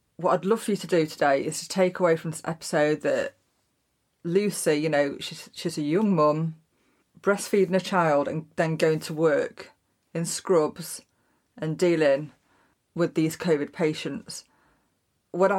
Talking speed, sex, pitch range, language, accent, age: 160 wpm, female, 150-180 Hz, English, British, 30-49